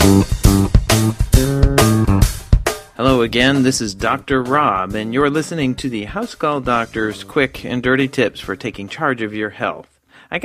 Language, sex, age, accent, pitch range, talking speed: English, male, 40-59, American, 105-135 Hz, 145 wpm